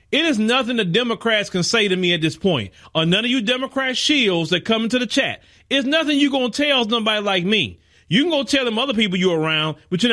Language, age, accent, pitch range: Japanese, 40-59, American, 170-280 Hz